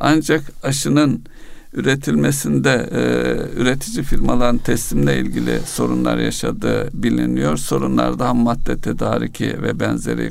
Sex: male